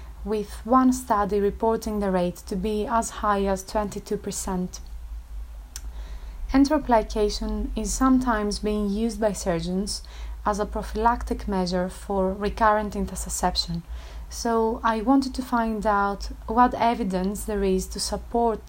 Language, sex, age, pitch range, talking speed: English, female, 30-49, 185-220 Hz, 125 wpm